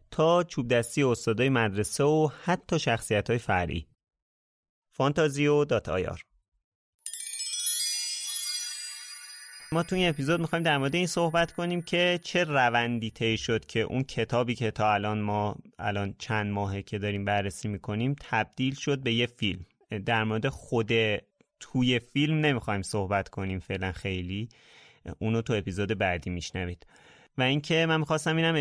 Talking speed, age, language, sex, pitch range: 140 wpm, 30-49, Persian, male, 105-135 Hz